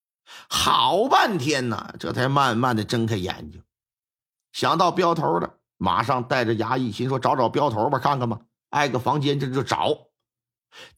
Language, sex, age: Chinese, male, 50-69